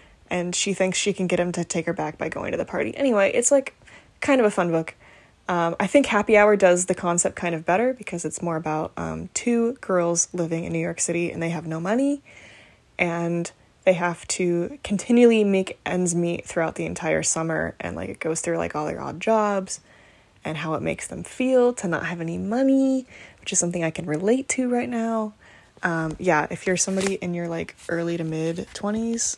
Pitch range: 170-220 Hz